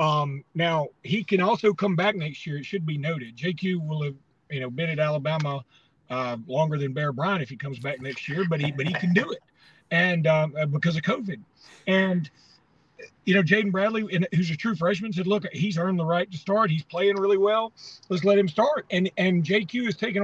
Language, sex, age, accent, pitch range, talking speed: English, male, 40-59, American, 155-200 Hz, 220 wpm